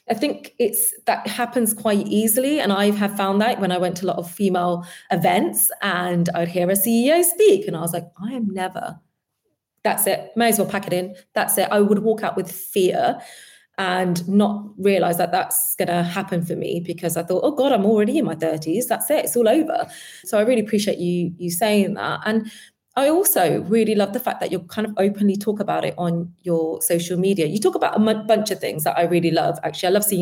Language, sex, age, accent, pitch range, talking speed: English, female, 20-39, British, 175-225 Hz, 235 wpm